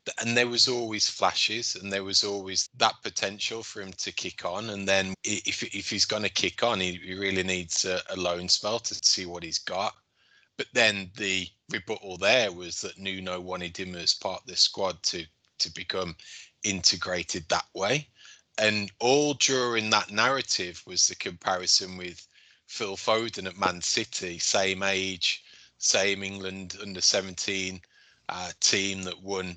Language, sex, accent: English, male, British